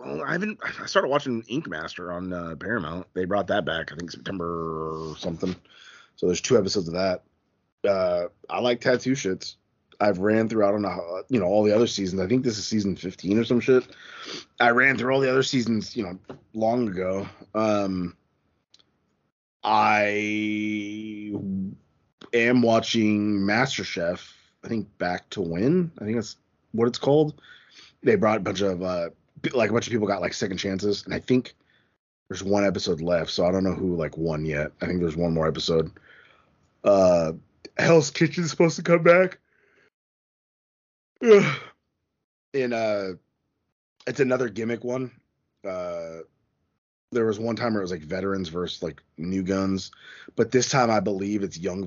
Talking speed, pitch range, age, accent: 170 wpm, 95-120 Hz, 30-49, American